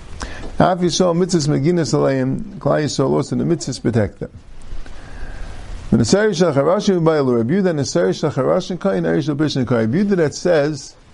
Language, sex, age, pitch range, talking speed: English, male, 50-69, 105-155 Hz, 135 wpm